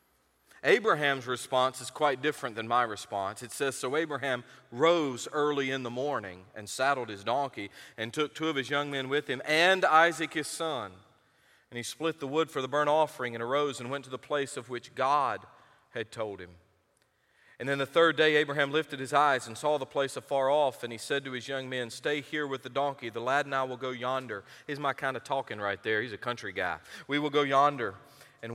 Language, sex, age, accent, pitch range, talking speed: English, male, 40-59, American, 125-150 Hz, 225 wpm